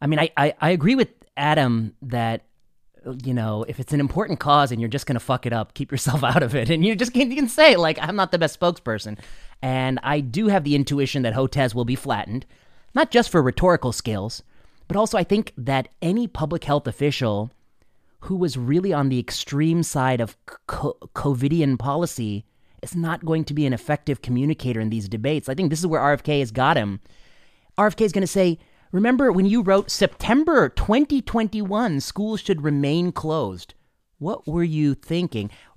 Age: 30-49